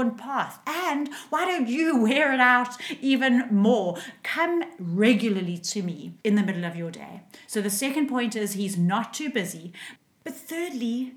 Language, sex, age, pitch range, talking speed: English, female, 30-49, 200-270 Hz, 165 wpm